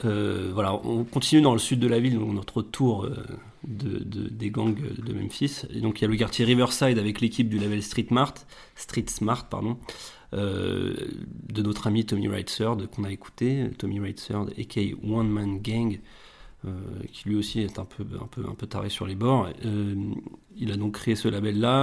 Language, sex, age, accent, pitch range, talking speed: French, male, 30-49, French, 105-115 Hz, 205 wpm